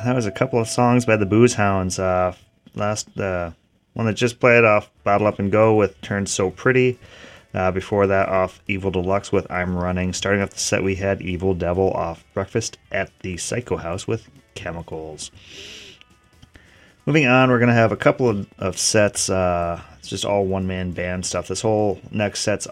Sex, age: male, 30-49